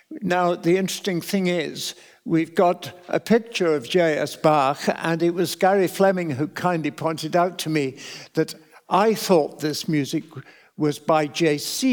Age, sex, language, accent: 60-79, male, English, British